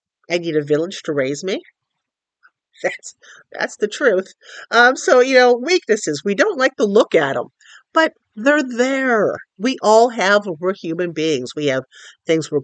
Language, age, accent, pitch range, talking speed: English, 50-69, American, 185-290 Hz, 170 wpm